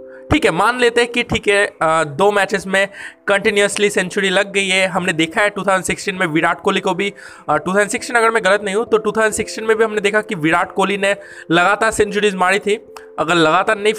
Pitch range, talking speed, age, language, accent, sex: 175-225 Hz, 210 wpm, 20-39, Hindi, native, male